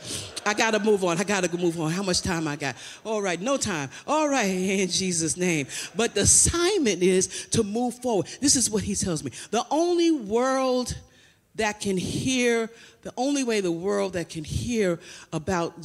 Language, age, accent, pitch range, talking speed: English, 40-59, American, 180-255 Hz, 195 wpm